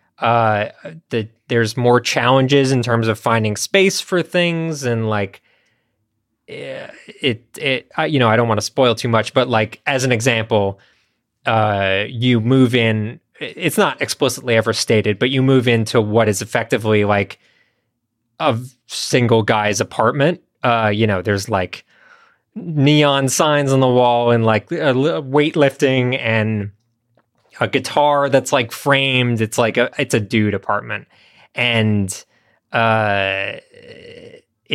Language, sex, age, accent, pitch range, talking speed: English, male, 20-39, American, 110-135 Hz, 135 wpm